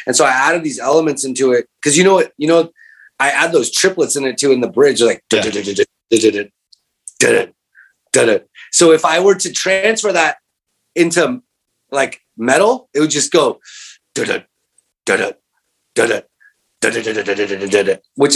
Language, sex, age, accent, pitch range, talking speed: English, male, 30-49, American, 135-220 Hz, 130 wpm